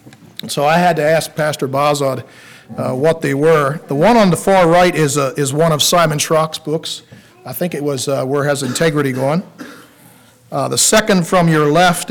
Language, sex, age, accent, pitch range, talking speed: English, male, 50-69, American, 140-175 Hz, 205 wpm